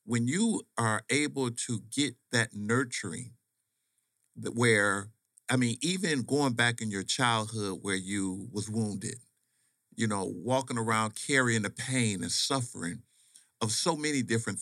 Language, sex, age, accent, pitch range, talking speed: English, male, 50-69, American, 110-130 Hz, 140 wpm